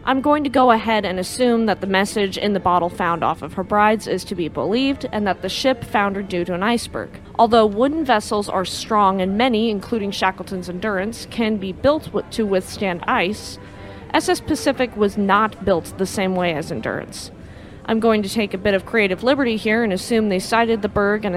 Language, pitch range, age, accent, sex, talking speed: English, 190-250 Hz, 20-39, American, female, 210 wpm